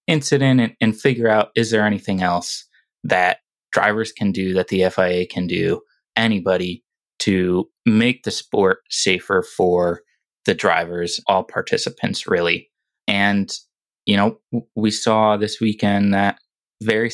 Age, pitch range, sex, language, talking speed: 20-39, 95-110 Hz, male, English, 135 wpm